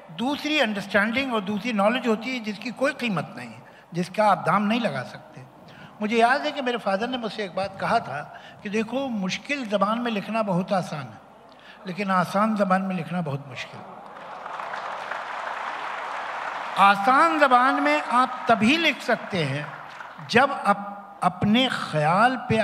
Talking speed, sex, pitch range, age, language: 155 wpm, male, 180-240 Hz, 60-79, Hindi